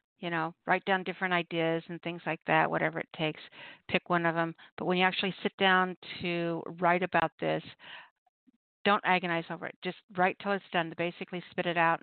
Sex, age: female, 50-69